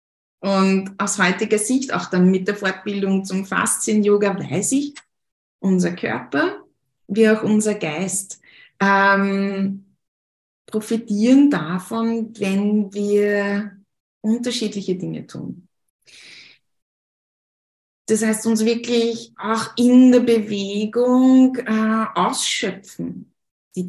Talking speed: 95 wpm